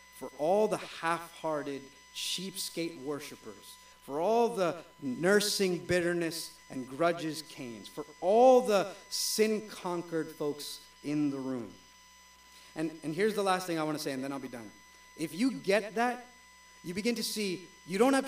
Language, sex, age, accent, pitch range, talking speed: English, male, 50-69, American, 160-245 Hz, 160 wpm